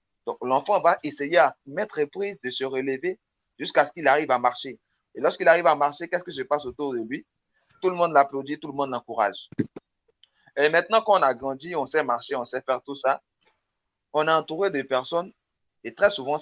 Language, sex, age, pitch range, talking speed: French, male, 30-49, 120-155 Hz, 210 wpm